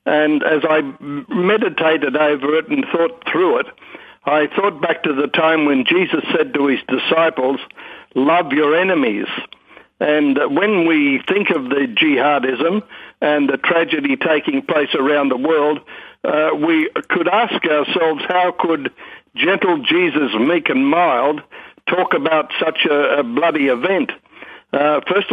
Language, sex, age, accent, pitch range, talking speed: English, male, 60-79, South African, 150-180 Hz, 145 wpm